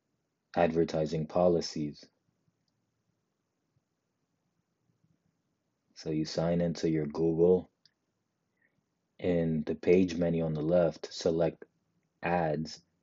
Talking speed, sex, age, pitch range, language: 80 wpm, male, 30-49, 80-90 Hz, English